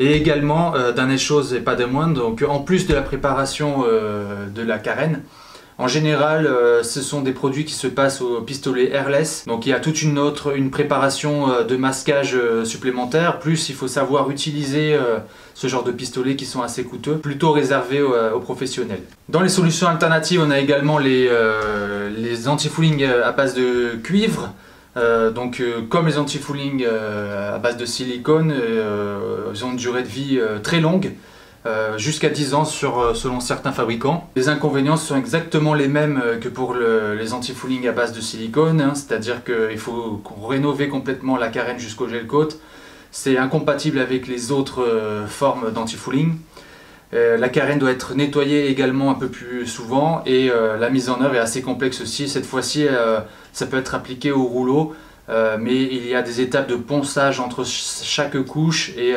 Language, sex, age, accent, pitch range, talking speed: French, male, 20-39, French, 120-145 Hz, 190 wpm